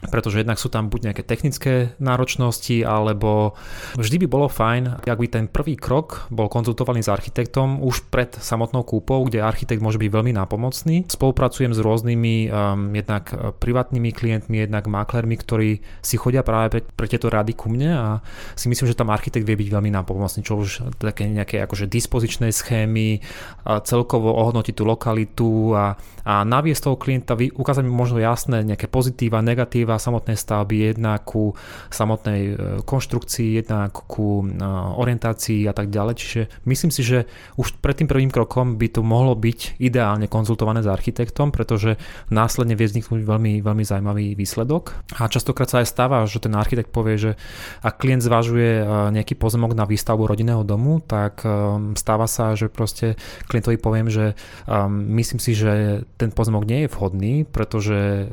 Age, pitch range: 20-39, 105-120 Hz